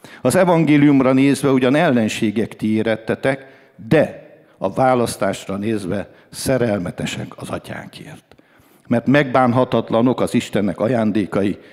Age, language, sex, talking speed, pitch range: 60-79, English, male, 95 wpm, 105-135 Hz